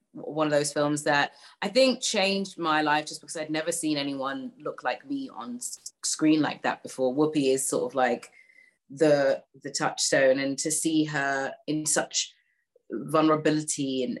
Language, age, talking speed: English, 30-49, 170 wpm